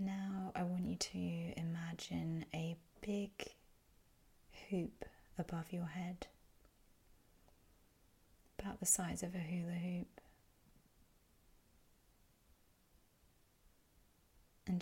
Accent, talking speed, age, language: British, 80 wpm, 20-39, English